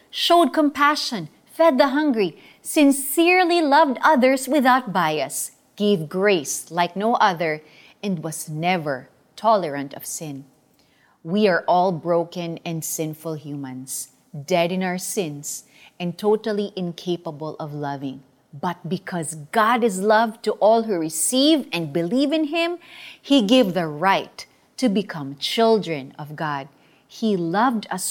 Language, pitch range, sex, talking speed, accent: Filipino, 165-270 Hz, female, 130 wpm, native